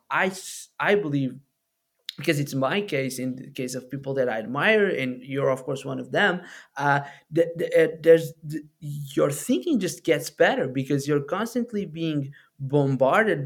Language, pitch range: English, 135-185 Hz